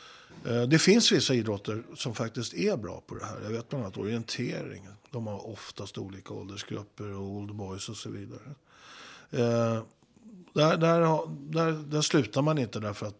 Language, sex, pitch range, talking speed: Swedish, male, 100-125 Hz, 160 wpm